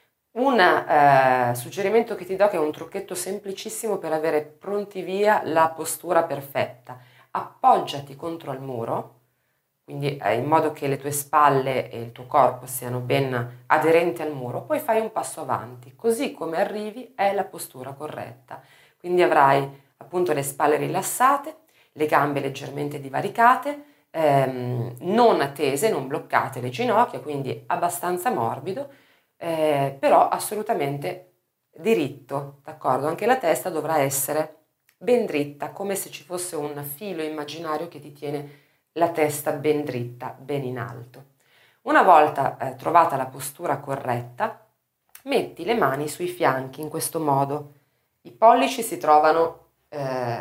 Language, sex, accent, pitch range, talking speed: Italian, female, native, 135-175 Hz, 140 wpm